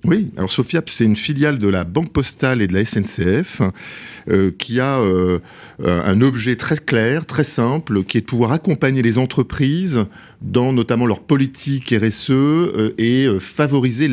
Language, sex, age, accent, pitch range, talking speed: French, male, 50-69, French, 100-135 Hz, 165 wpm